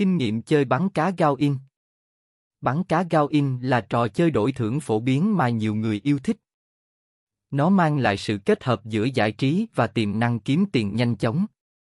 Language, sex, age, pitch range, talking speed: Vietnamese, male, 20-39, 110-160 Hz, 195 wpm